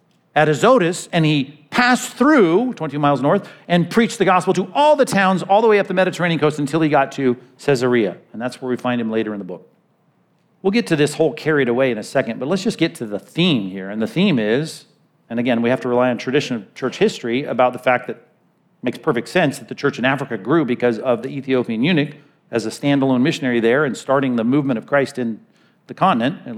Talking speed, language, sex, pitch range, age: 240 wpm, English, male, 125-155 Hz, 40-59